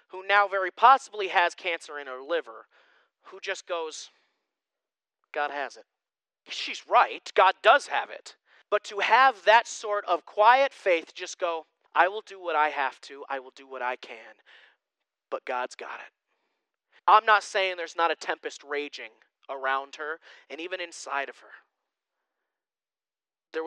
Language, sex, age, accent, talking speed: English, male, 30-49, American, 160 wpm